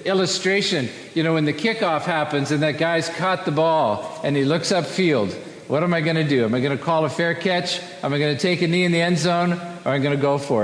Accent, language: American, English